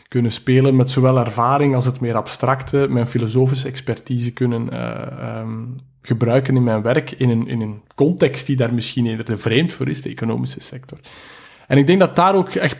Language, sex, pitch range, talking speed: Dutch, male, 120-140 Hz, 185 wpm